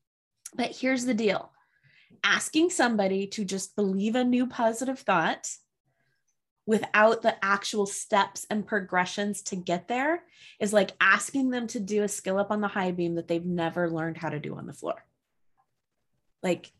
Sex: female